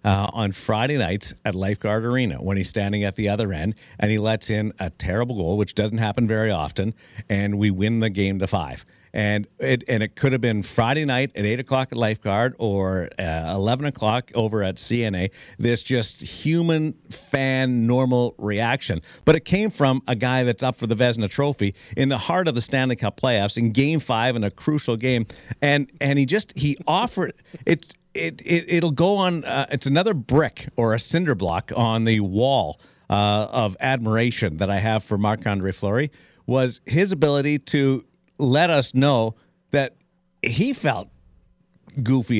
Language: English